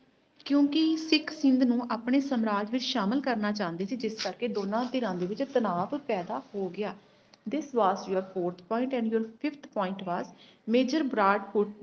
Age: 30-49